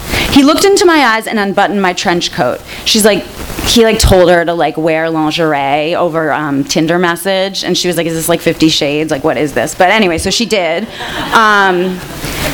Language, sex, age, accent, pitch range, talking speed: English, female, 30-49, American, 175-255 Hz, 205 wpm